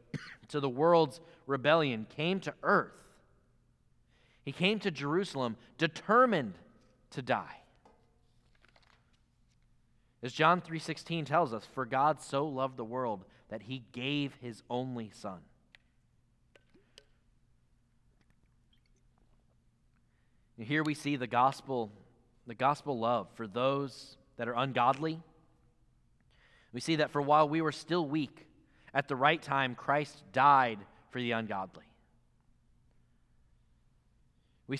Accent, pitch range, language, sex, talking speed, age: American, 125-160 Hz, English, male, 110 wpm, 20-39